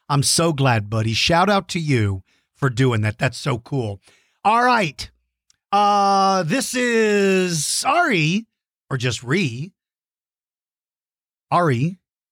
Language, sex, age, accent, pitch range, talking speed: English, male, 50-69, American, 135-210 Hz, 115 wpm